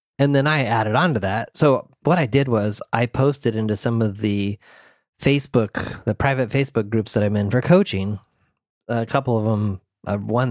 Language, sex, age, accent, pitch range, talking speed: English, male, 30-49, American, 110-145 Hz, 190 wpm